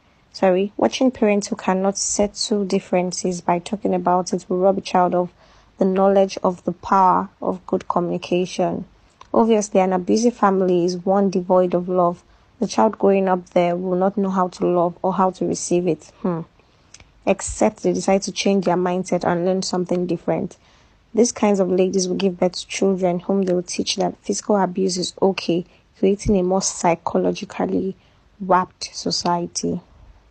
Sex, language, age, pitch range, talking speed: female, English, 20-39, 180-205 Hz, 170 wpm